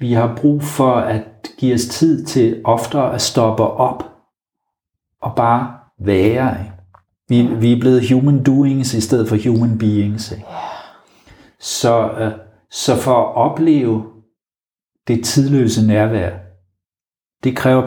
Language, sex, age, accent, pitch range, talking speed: Danish, male, 60-79, native, 105-125 Hz, 120 wpm